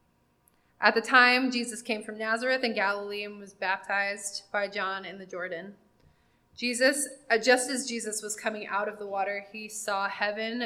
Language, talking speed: English, 170 wpm